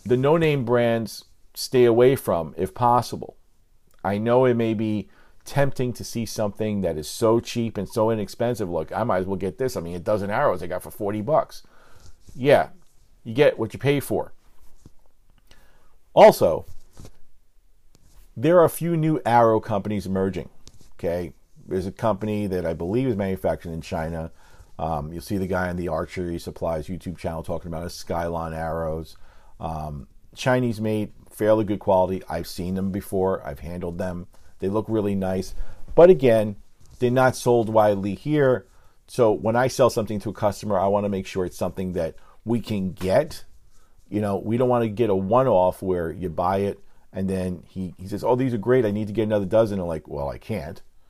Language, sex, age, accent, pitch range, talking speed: English, male, 40-59, American, 90-110 Hz, 190 wpm